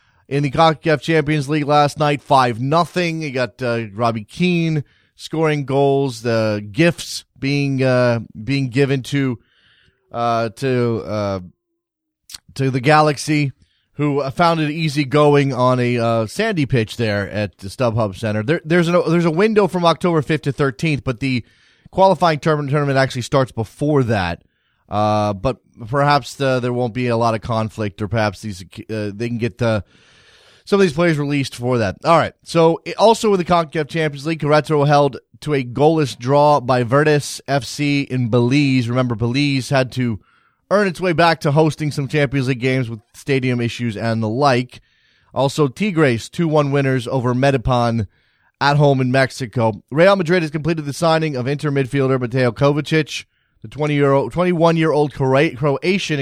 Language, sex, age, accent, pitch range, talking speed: English, male, 30-49, American, 120-155 Hz, 165 wpm